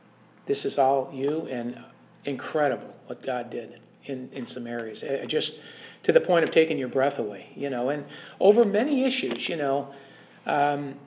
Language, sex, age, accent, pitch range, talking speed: English, male, 50-69, American, 130-165 Hz, 170 wpm